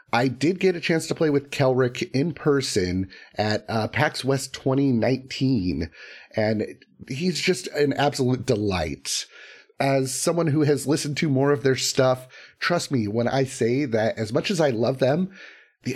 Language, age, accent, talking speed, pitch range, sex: English, 30-49, American, 170 wpm, 115-160 Hz, male